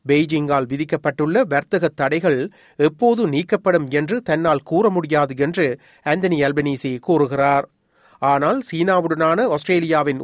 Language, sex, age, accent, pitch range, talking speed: Tamil, male, 40-59, native, 145-195 Hz, 100 wpm